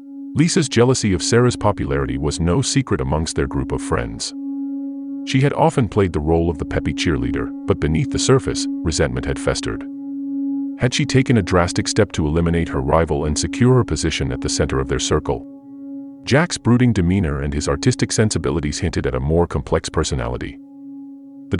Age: 40-59